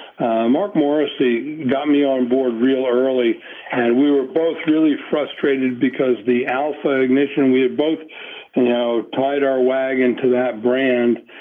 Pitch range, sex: 120-145 Hz, male